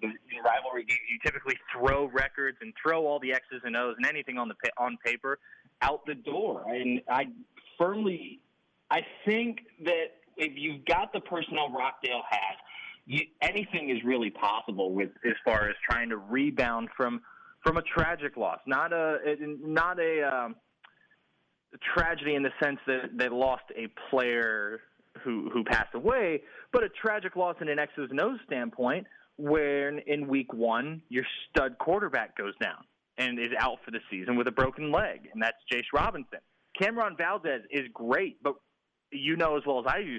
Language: English